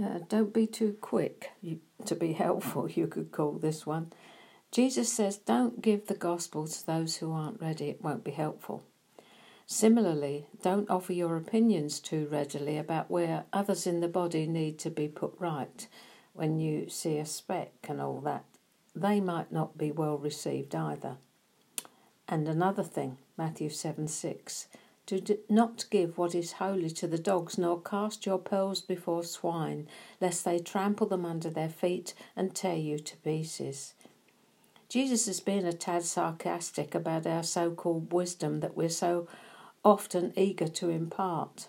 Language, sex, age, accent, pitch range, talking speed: English, female, 60-79, British, 160-195 Hz, 160 wpm